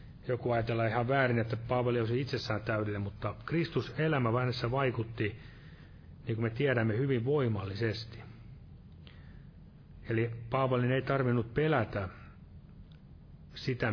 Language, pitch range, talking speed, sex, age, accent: Finnish, 115-135 Hz, 110 wpm, male, 30-49, native